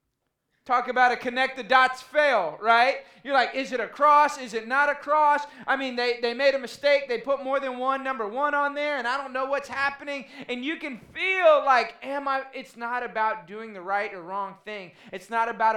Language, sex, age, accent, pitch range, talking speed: English, male, 20-39, American, 210-270 Hz, 230 wpm